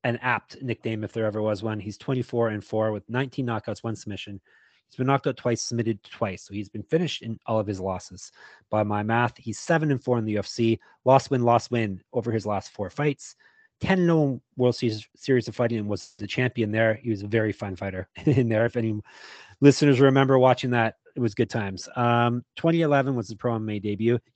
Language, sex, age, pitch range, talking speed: English, male, 30-49, 105-135 Hz, 215 wpm